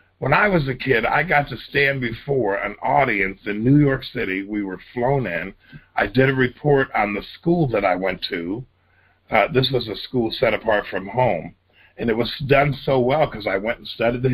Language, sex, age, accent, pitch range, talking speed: English, male, 50-69, American, 105-140 Hz, 220 wpm